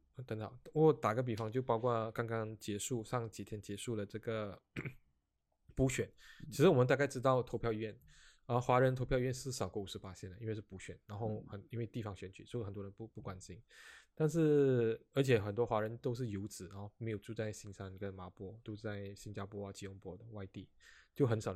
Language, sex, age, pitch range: Chinese, male, 20-39, 105-130 Hz